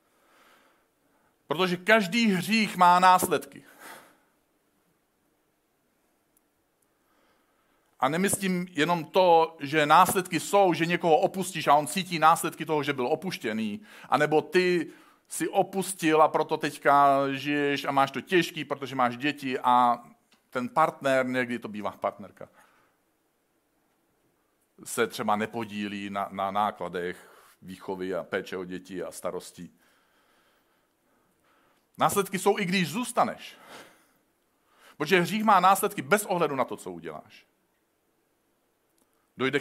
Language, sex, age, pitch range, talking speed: Czech, male, 50-69, 120-180 Hz, 115 wpm